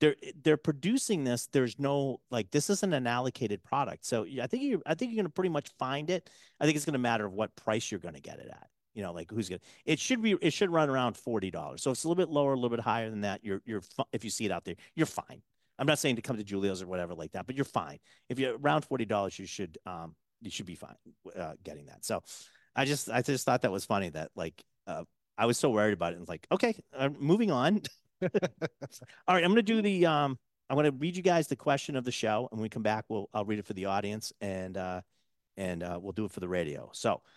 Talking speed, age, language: 270 wpm, 40-59, English